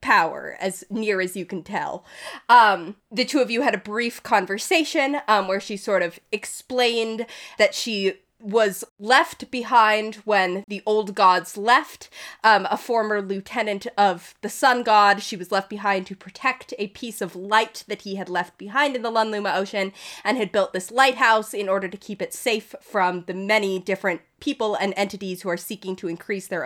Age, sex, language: 20-39, female, English